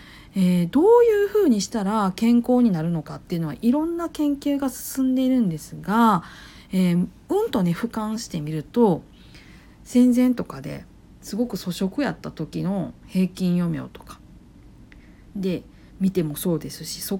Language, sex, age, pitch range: Japanese, female, 50-69, 175-265 Hz